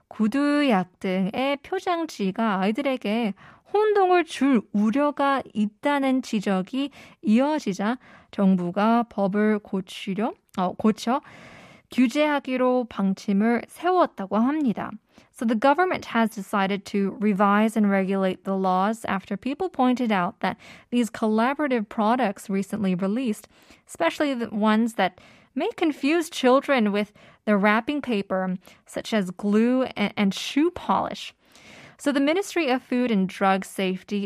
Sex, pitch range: female, 200-275 Hz